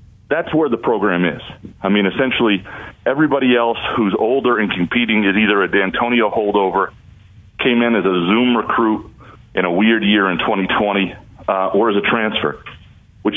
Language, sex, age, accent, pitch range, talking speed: English, male, 40-59, American, 100-125 Hz, 165 wpm